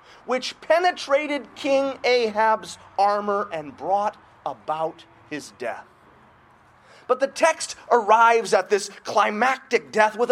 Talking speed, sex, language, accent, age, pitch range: 110 wpm, male, English, American, 30-49, 180-255 Hz